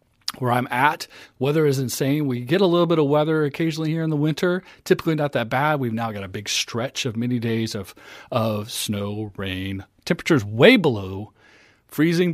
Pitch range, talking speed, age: 115-150 Hz, 190 wpm, 40-59